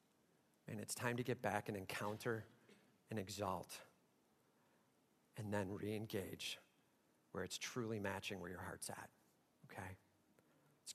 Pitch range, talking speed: 125-180 Hz, 125 wpm